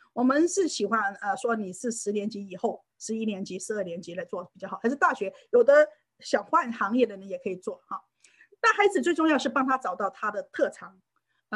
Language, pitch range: Chinese, 195-260 Hz